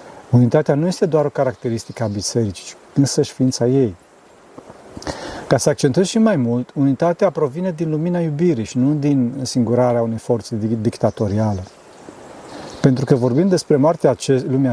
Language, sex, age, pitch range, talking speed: Romanian, male, 40-59, 125-170 Hz, 150 wpm